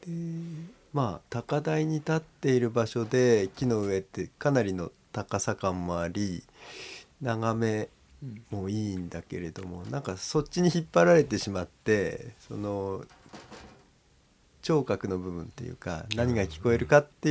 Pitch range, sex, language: 95-130 Hz, male, Japanese